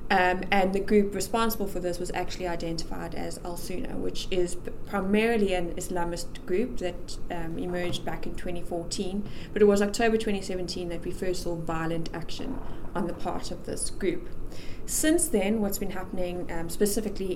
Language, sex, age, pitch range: English, female, 20-39, 175-200 Hz